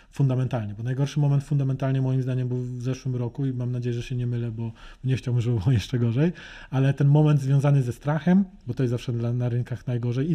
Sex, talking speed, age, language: male, 230 wpm, 20-39, Polish